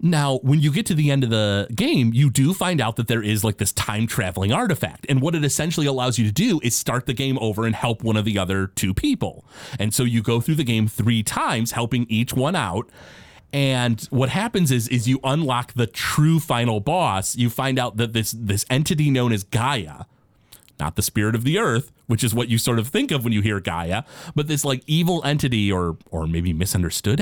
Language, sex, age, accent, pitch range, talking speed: English, male, 30-49, American, 105-140 Hz, 230 wpm